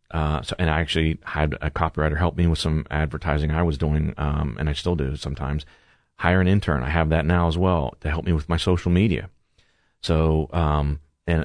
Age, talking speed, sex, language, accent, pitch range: 30-49, 215 wpm, male, English, American, 75-85 Hz